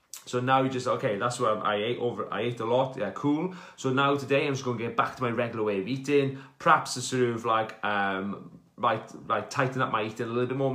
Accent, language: British, English